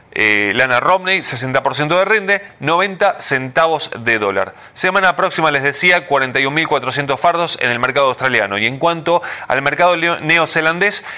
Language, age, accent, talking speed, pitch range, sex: Spanish, 30-49, Argentinian, 140 wpm, 130-170 Hz, male